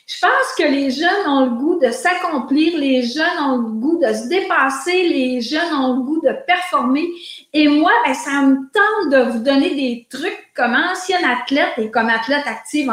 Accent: Canadian